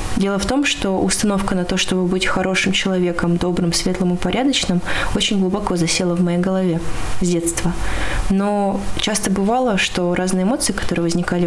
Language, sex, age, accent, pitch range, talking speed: Russian, female, 20-39, native, 175-200 Hz, 160 wpm